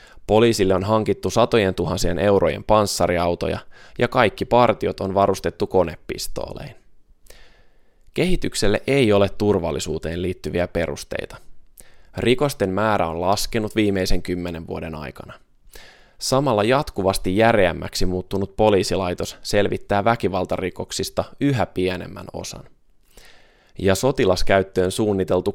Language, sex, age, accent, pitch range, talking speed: Finnish, male, 20-39, native, 90-110 Hz, 95 wpm